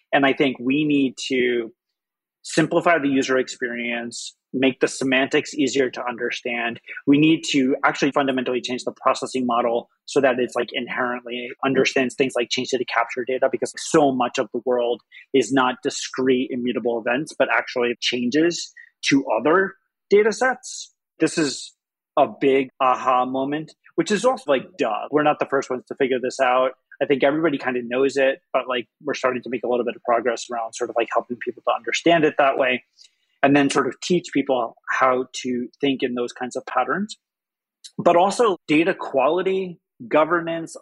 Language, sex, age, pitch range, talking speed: English, male, 30-49, 125-150 Hz, 180 wpm